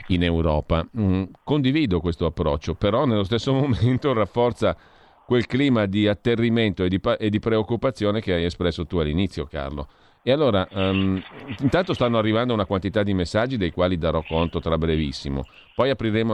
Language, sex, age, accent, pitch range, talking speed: Italian, male, 40-59, native, 85-115 Hz, 160 wpm